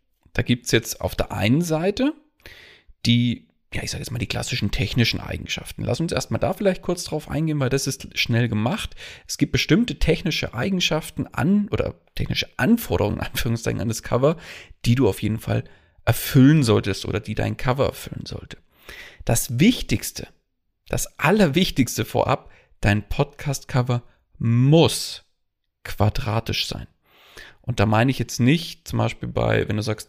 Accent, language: German, German